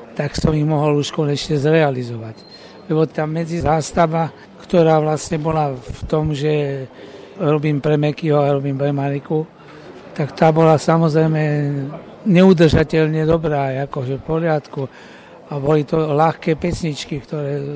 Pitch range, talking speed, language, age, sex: 145-180 Hz, 130 wpm, Slovak, 60-79, male